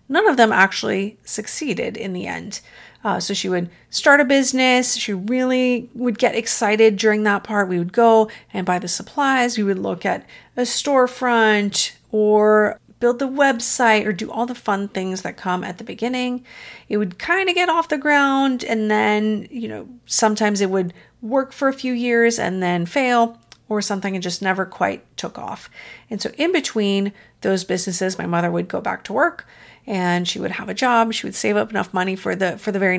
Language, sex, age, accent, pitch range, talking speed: English, female, 40-59, American, 195-245 Hz, 205 wpm